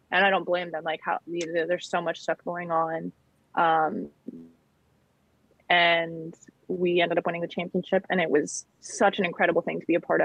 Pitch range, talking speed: 165-185 Hz, 185 wpm